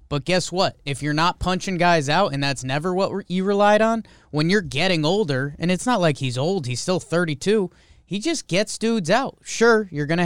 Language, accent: English, American